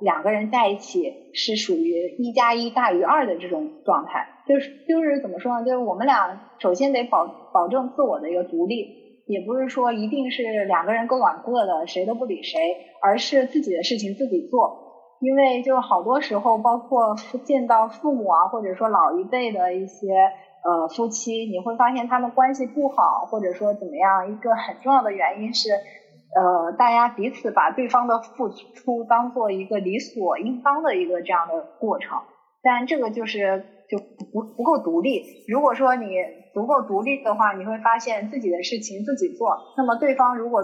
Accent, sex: native, female